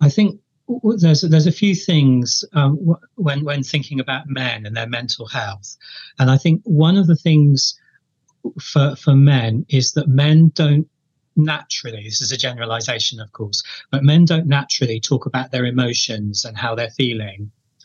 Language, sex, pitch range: English, male, 125-150 Hz